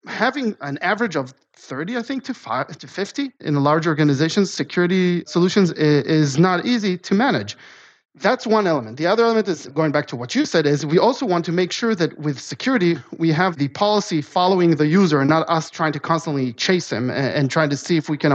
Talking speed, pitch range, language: 215 wpm, 150-190 Hz, English